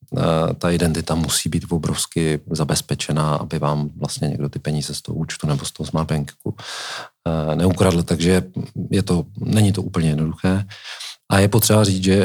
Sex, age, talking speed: male, 40-59, 155 wpm